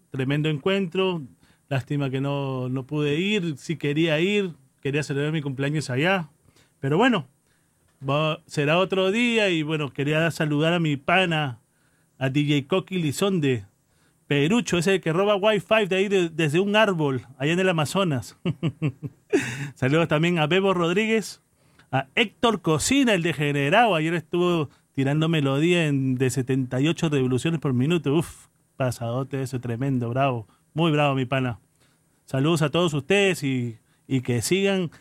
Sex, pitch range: male, 140-175 Hz